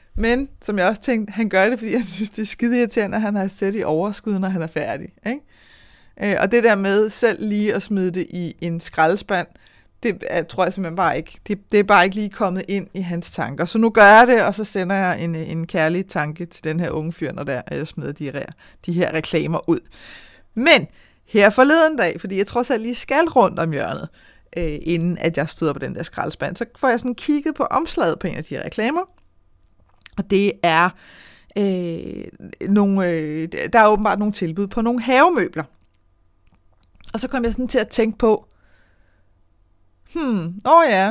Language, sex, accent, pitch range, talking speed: Danish, female, native, 170-230 Hz, 215 wpm